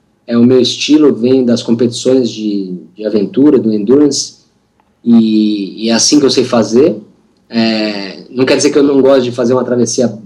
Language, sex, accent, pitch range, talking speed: Portuguese, male, Brazilian, 120-155 Hz, 185 wpm